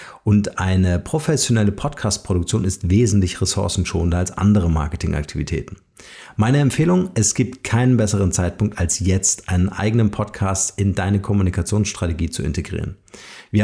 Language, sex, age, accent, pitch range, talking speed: German, male, 50-69, German, 95-115 Hz, 125 wpm